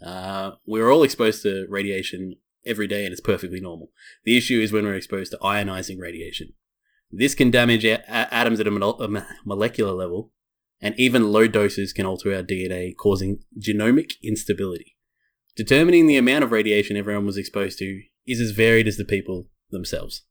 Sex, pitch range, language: male, 95-110 Hz, English